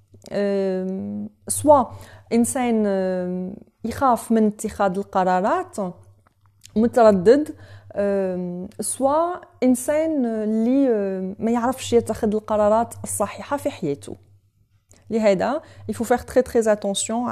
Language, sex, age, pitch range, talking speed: Arabic, female, 30-49, 180-250 Hz, 75 wpm